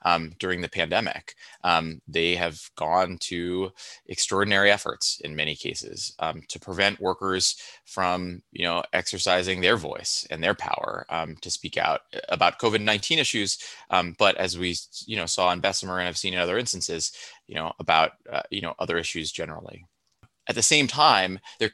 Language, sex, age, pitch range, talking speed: English, male, 20-39, 85-105 Hz, 175 wpm